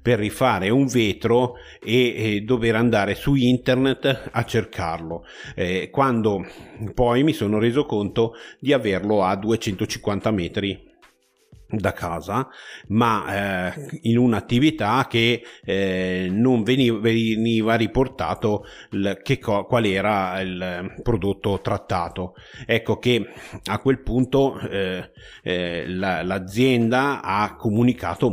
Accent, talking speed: native, 115 wpm